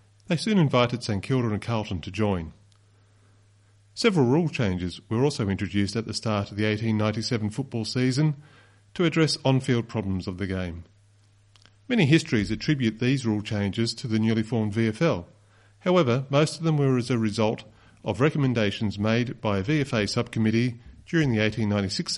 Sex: male